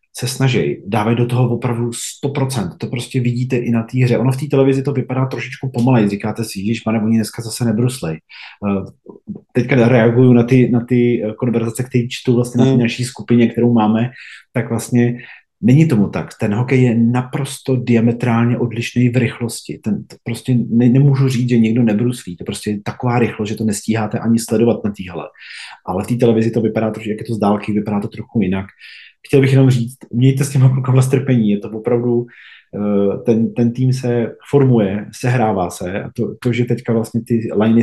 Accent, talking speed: native, 195 wpm